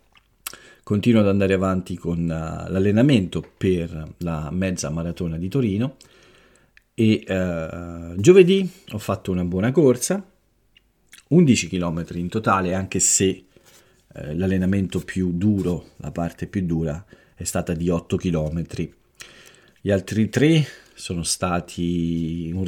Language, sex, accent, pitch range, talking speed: Italian, male, native, 85-110 Hz, 120 wpm